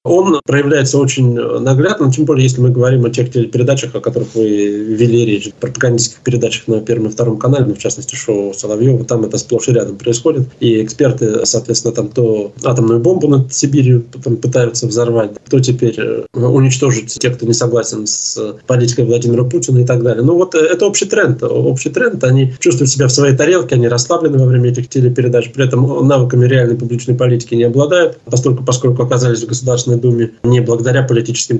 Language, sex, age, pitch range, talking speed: Russian, male, 20-39, 115-130 Hz, 180 wpm